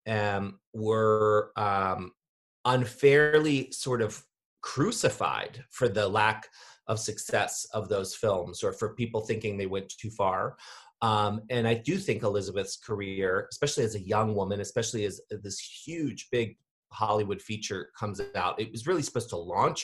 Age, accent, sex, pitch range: 30-49, American, male, 105-125 Hz